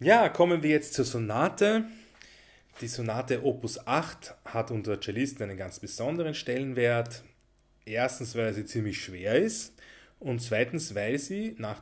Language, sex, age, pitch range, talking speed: German, male, 30-49, 110-140 Hz, 140 wpm